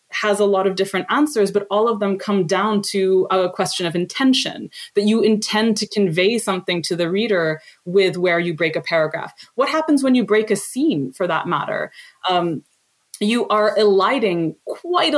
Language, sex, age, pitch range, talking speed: English, female, 20-39, 190-270 Hz, 185 wpm